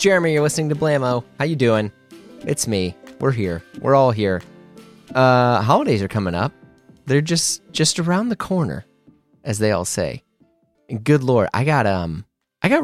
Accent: American